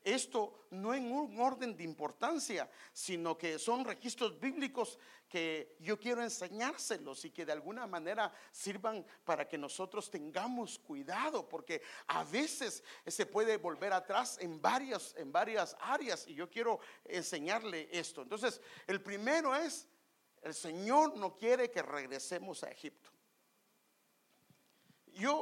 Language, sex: English, male